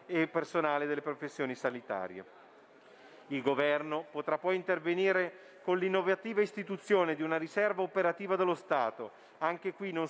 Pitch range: 145-185 Hz